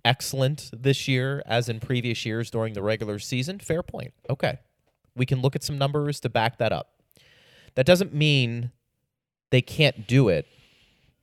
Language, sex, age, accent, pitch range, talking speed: English, male, 30-49, American, 110-145 Hz, 165 wpm